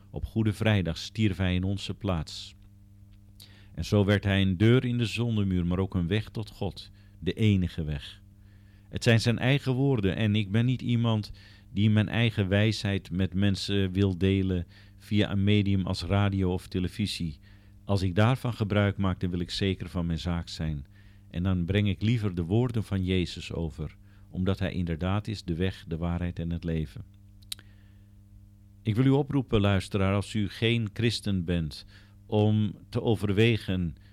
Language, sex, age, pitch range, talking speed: Dutch, male, 50-69, 95-105 Hz, 170 wpm